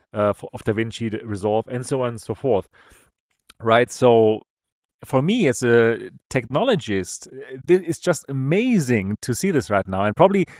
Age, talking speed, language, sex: 30-49, 155 wpm, English, male